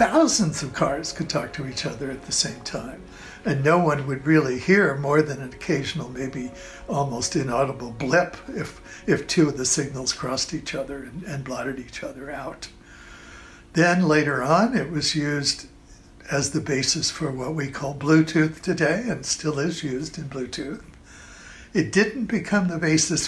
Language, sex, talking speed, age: English, male, 175 wpm, 60-79